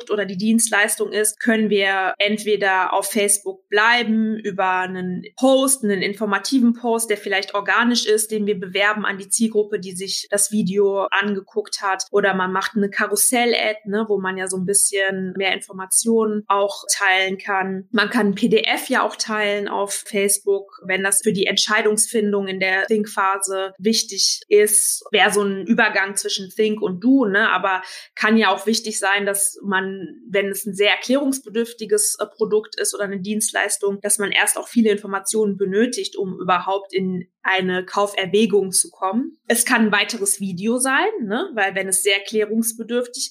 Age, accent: 20-39, German